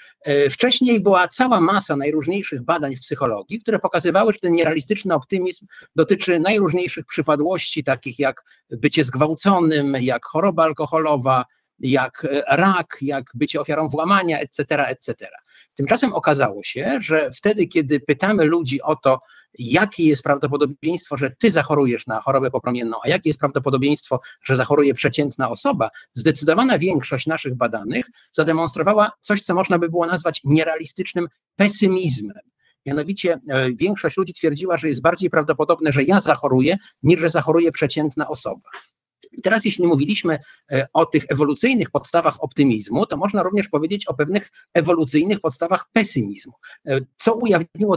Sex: male